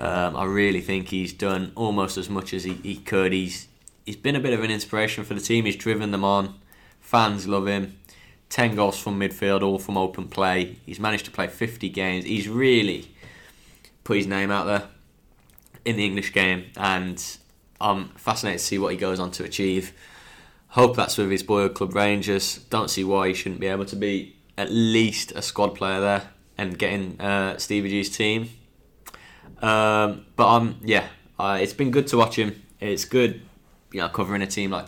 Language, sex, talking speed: English, male, 200 wpm